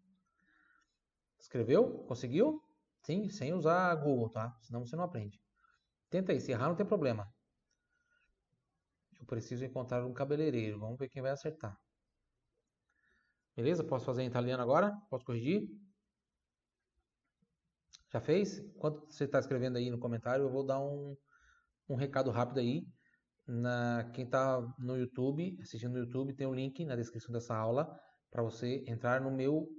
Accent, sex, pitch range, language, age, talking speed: Brazilian, male, 125-165 Hz, Italian, 20-39, 145 wpm